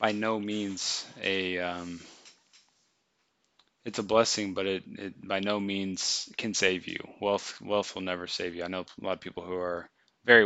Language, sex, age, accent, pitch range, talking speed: English, male, 20-39, American, 100-125 Hz, 180 wpm